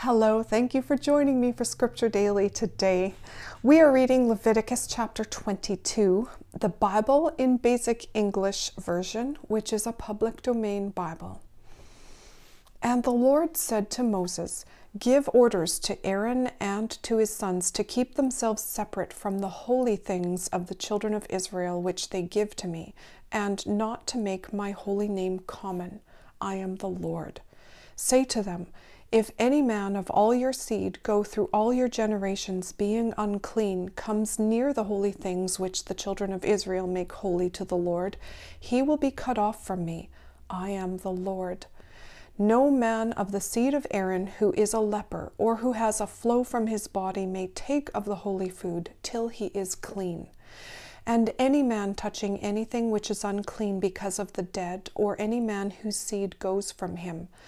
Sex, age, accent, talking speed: female, 40-59, American, 170 wpm